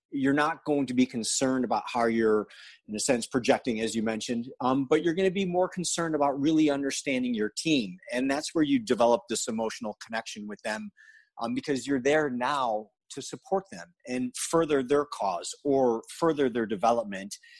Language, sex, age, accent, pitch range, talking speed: English, male, 30-49, American, 120-165 Hz, 190 wpm